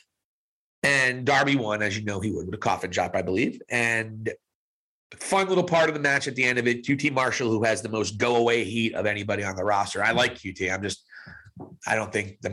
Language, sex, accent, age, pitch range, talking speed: English, male, American, 40-59, 125-190 Hz, 230 wpm